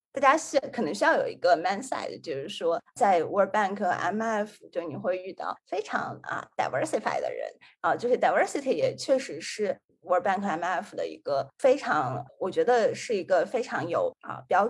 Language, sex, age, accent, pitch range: Chinese, female, 20-39, native, 205-345 Hz